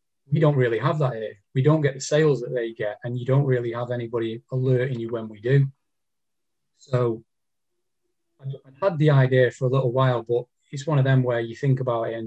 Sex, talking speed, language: male, 220 wpm, English